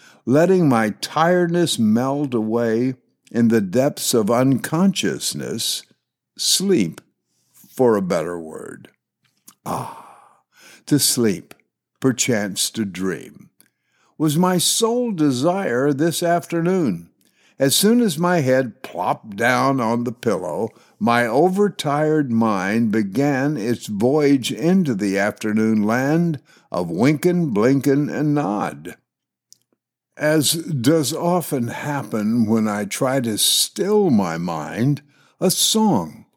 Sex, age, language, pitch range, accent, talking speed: male, 60-79, English, 115-170 Hz, American, 105 wpm